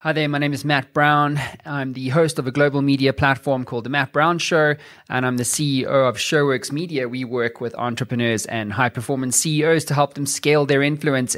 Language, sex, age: English, male, 20-39